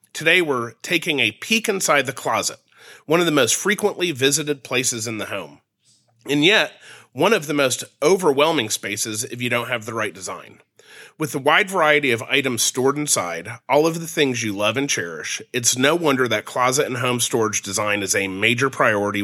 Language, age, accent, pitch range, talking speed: English, 30-49, American, 110-145 Hz, 195 wpm